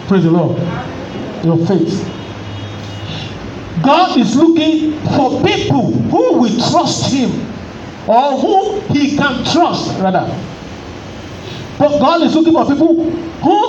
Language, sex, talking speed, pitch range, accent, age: English, male, 120 wpm, 155-245 Hz, Nigerian, 50-69